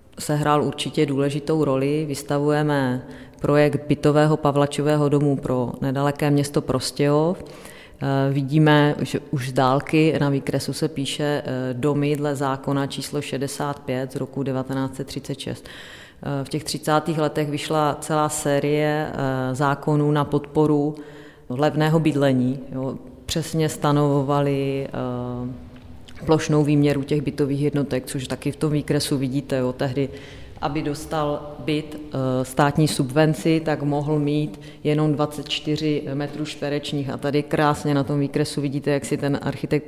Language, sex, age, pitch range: Czech, female, 30-49, 140-150 Hz